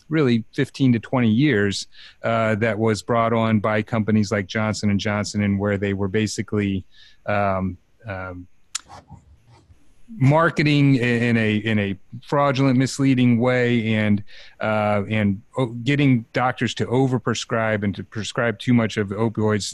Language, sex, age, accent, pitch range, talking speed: English, male, 30-49, American, 105-120 Hz, 140 wpm